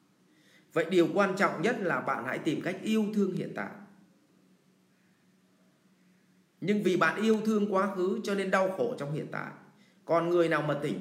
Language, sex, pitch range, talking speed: English, male, 150-190 Hz, 180 wpm